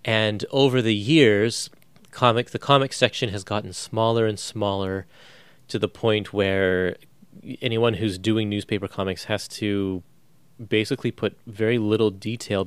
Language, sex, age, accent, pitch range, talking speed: English, male, 30-49, American, 95-120 Hz, 135 wpm